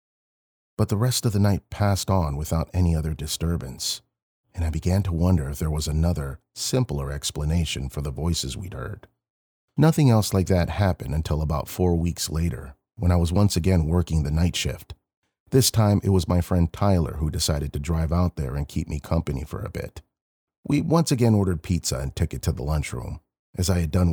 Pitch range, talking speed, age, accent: 75-95 Hz, 205 wpm, 40-59, American